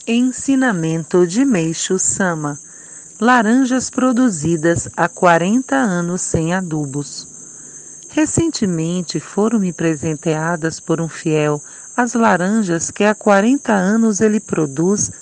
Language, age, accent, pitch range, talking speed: Portuguese, 50-69, Brazilian, 160-225 Hz, 100 wpm